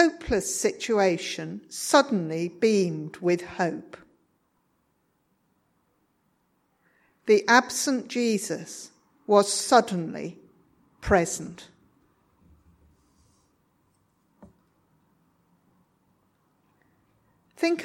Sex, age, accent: female, 50-69, British